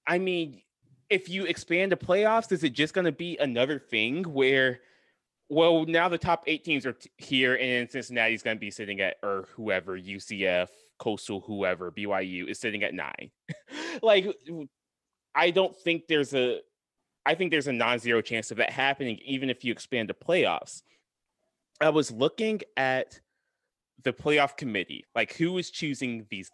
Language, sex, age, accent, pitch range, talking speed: English, male, 20-39, American, 110-150 Hz, 170 wpm